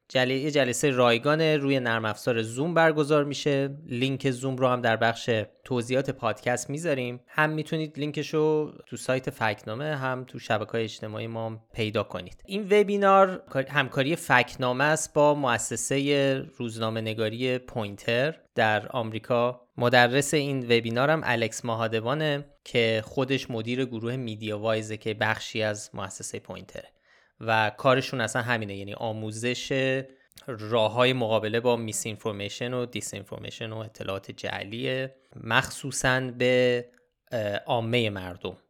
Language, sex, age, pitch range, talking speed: Persian, male, 20-39, 110-135 Hz, 125 wpm